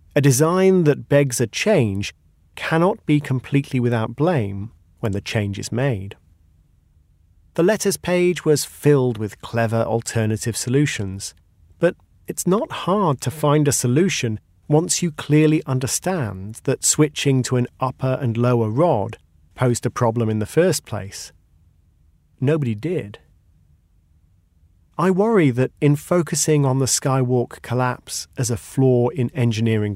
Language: English